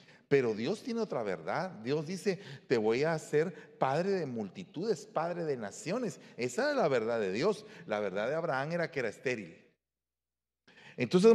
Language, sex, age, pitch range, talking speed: Spanish, male, 40-59, 125-200 Hz, 170 wpm